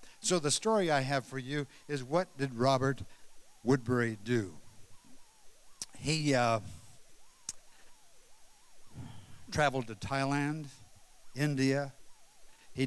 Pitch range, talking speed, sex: 125-145 Hz, 95 wpm, male